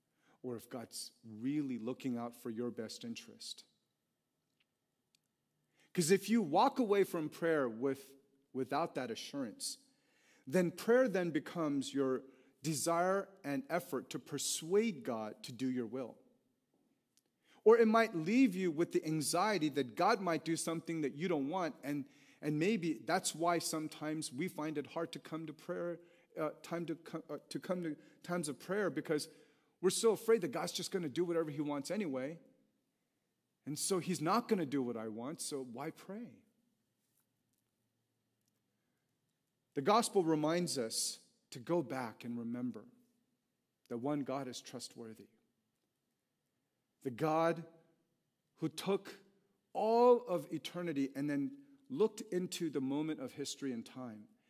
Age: 40-59